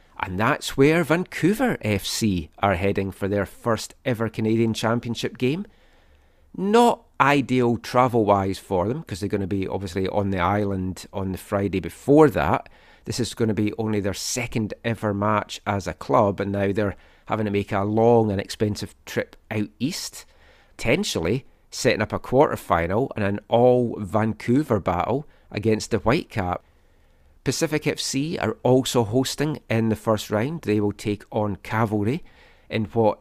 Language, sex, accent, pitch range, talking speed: English, male, British, 100-120 Hz, 155 wpm